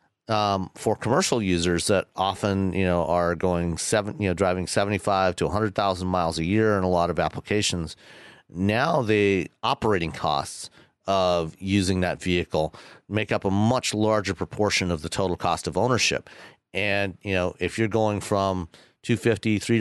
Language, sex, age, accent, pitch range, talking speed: English, male, 40-59, American, 90-105 Hz, 170 wpm